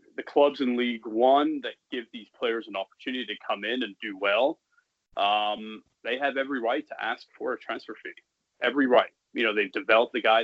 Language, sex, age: English, male, 30-49